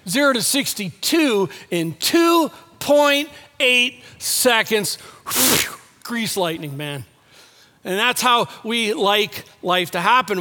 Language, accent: English, American